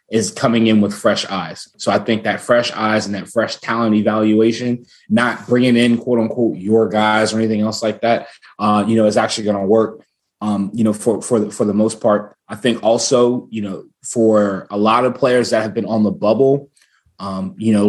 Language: English